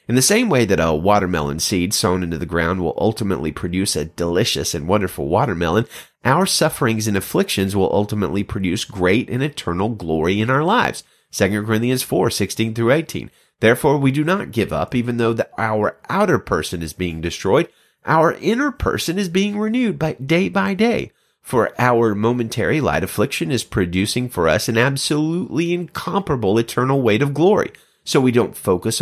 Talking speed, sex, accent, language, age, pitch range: 175 wpm, male, American, English, 30-49, 95-140 Hz